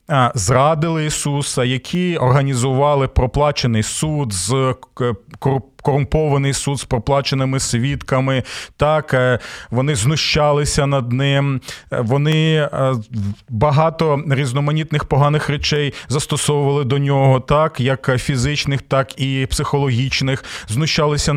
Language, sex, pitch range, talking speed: Ukrainian, male, 130-160 Hz, 95 wpm